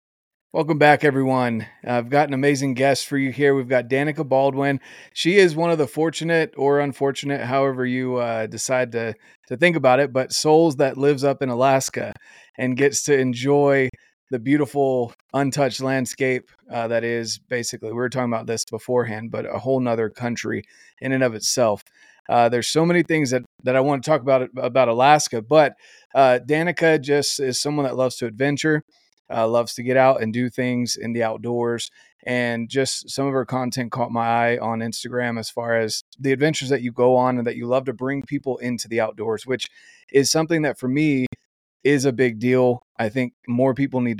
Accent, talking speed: American, 200 wpm